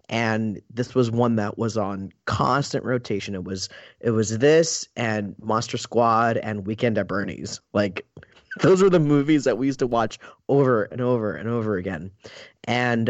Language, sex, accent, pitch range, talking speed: English, male, American, 110-130 Hz, 175 wpm